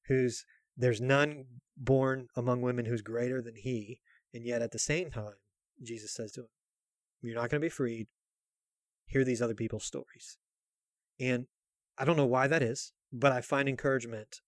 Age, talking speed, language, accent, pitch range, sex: 30-49, 175 wpm, English, American, 115-130 Hz, male